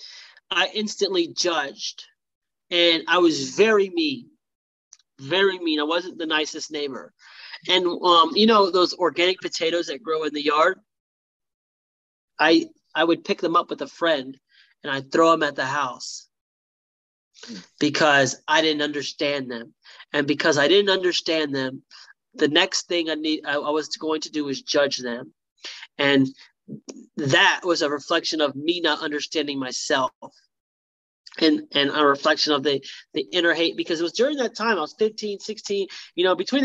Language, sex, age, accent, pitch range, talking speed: English, male, 30-49, American, 145-200 Hz, 165 wpm